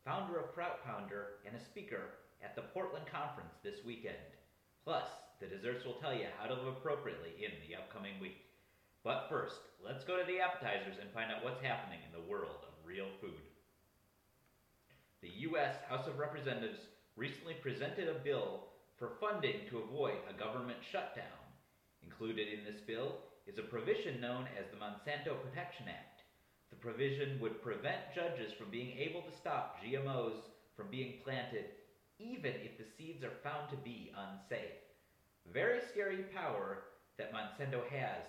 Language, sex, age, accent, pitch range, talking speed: English, male, 30-49, American, 110-165 Hz, 160 wpm